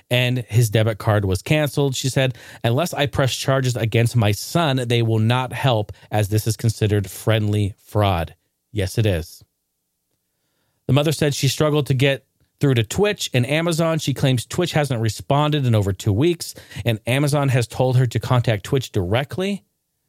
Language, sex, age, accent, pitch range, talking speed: English, male, 40-59, American, 105-140 Hz, 175 wpm